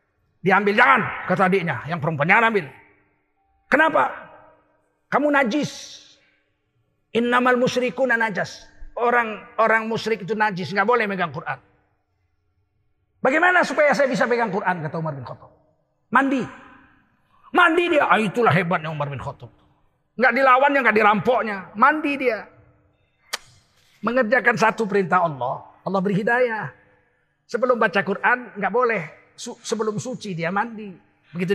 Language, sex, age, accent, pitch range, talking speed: Indonesian, male, 40-59, native, 155-235 Hz, 120 wpm